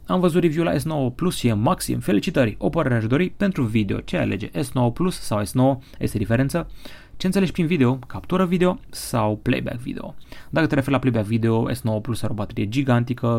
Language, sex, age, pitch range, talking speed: Romanian, male, 20-39, 110-145 Hz, 195 wpm